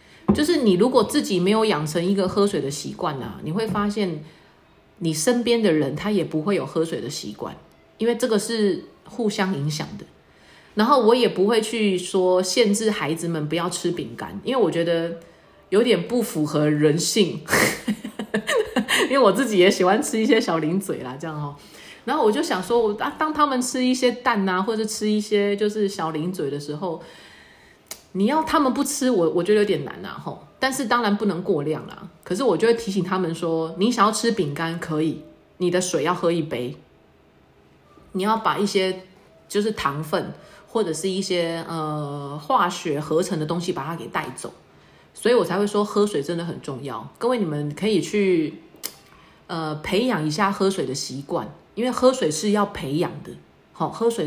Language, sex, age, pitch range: Chinese, female, 30-49, 165-220 Hz